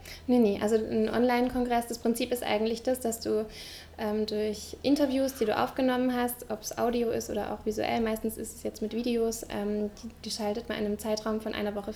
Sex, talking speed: female, 215 wpm